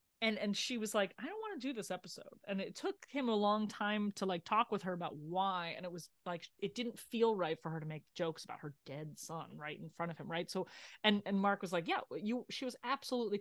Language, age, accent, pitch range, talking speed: English, 30-49, American, 165-220 Hz, 270 wpm